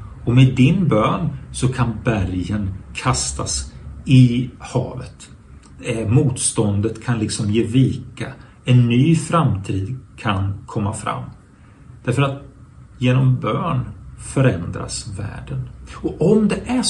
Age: 40-59